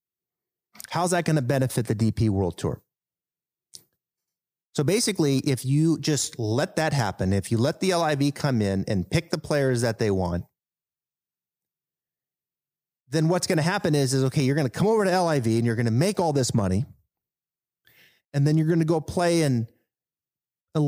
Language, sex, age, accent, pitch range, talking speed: English, male, 30-49, American, 120-160 Hz, 180 wpm